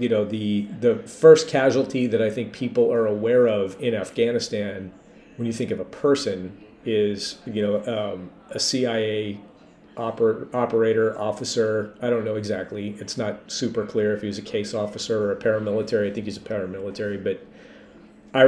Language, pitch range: English, 105-120 Hz